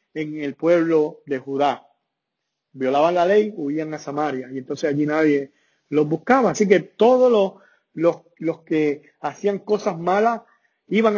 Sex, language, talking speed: male, English, 150 wpm